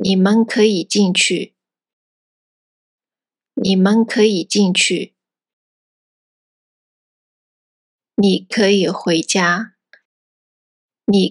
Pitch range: 185-225 Hz